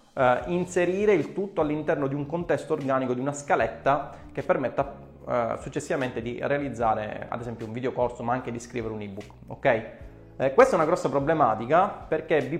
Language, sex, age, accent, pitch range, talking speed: Italian, male, 20-39, native, 115-135 Hz, 180 wpm